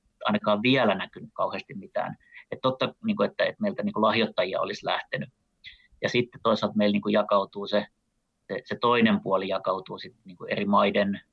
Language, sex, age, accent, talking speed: Finnish, male, 30-49, native, 125 wpm